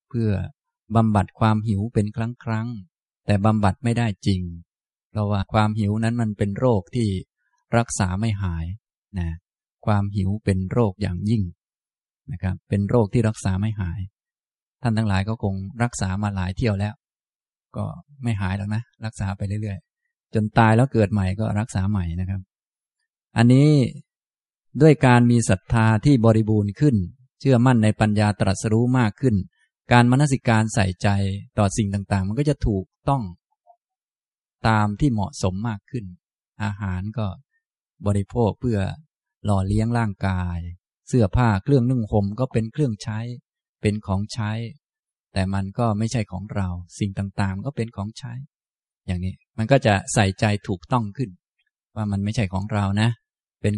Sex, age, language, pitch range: male, 20-39, Thai, 100-120 Hz